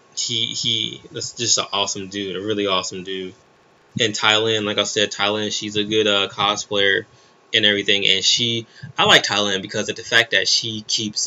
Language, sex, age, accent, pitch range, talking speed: English, male, 20-39, American, 105-120 Hz, 190 wpm